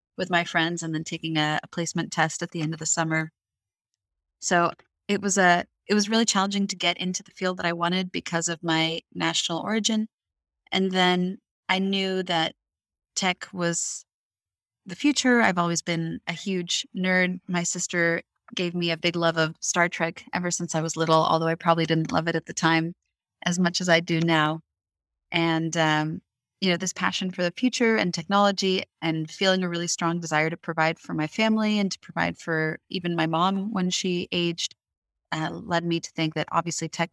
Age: 30-49